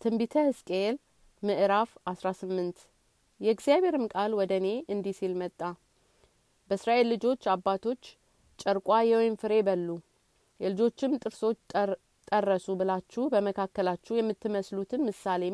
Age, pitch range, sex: 30-49, 190-230 Hz, female